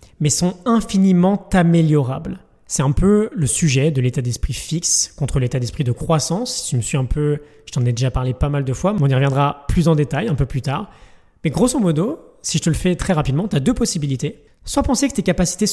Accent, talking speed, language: French, 240 wpm, French